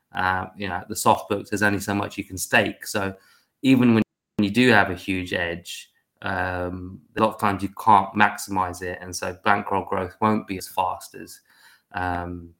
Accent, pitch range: British, 95-105 Hz